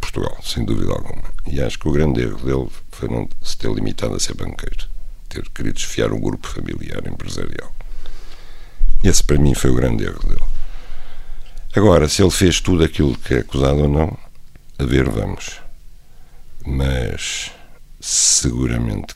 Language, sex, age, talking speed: Portuguese, male, 60-79, 155 wpm